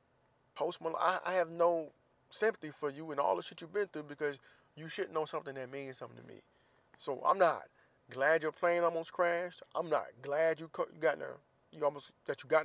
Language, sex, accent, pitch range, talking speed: English, male, American, 135-165 Hz, 215 wpm